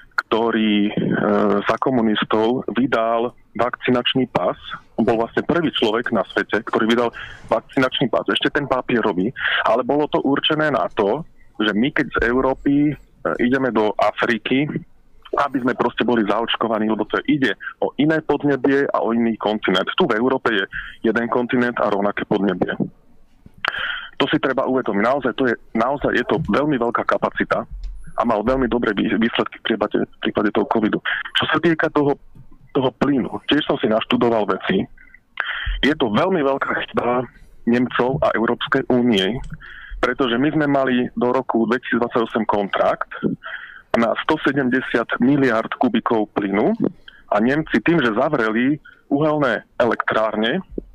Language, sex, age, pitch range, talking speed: Slovak, male, 30-49, 115-140 Hz, 145 wpm